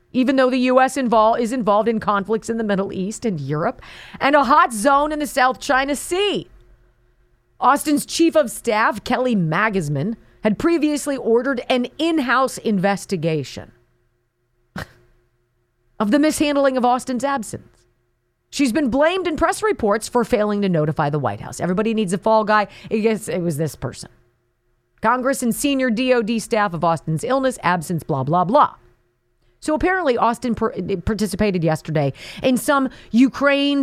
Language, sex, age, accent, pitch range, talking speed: English, female, 40-59, American, 155-255 Hz, 145 wpm